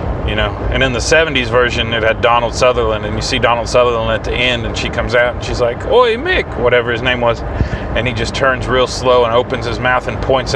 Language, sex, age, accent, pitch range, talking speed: English, male, 30-49, American, 115-140 Hz, 250 wpm